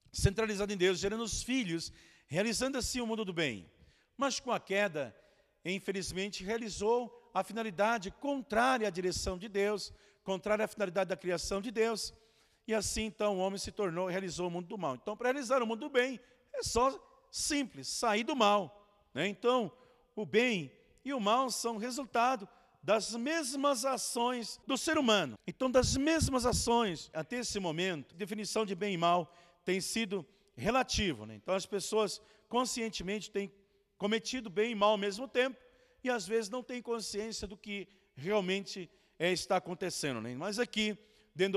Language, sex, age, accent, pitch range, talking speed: Portuguese, male, 50-69, Brazilian, 190-240 Hz, 170 wpm